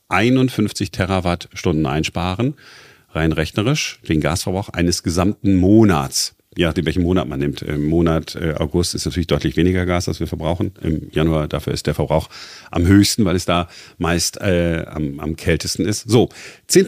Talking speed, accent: 160 wpm, German